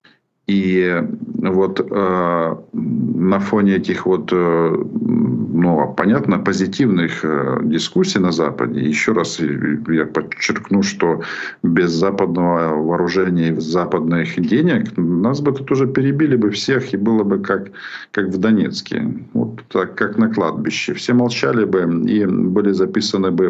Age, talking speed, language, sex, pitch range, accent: 50-69, 130 wpm, Ukrainian, male, 85-110 Hz, native